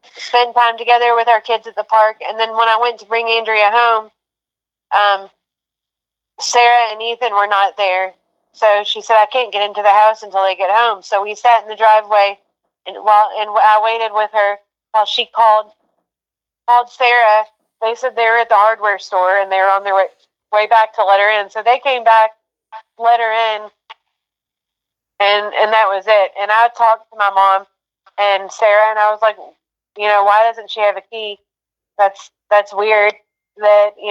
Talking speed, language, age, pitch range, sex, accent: 195 wpm, English, 30-49, 205-225 Hz, female, American